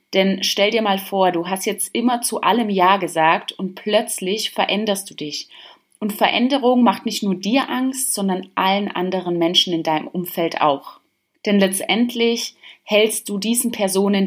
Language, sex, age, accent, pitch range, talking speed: German, female, 30-49, German, 175-230 Hz, 165 wpm